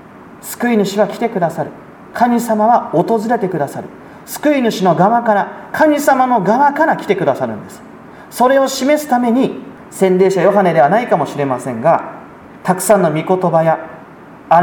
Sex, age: male, 40-59